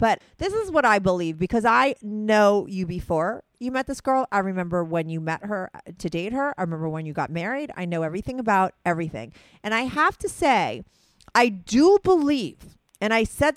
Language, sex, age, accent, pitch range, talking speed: English, female, 40-59, American, 185-270 Hz, 205 wpm